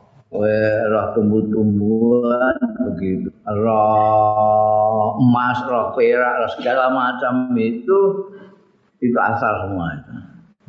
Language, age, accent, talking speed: Indonesian, 50-69, native, 80 wpm